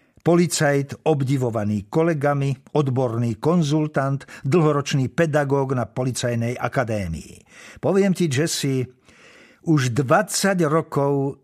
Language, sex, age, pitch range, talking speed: Slovak, male, 50-69, 105-150 Hz, 85 wpm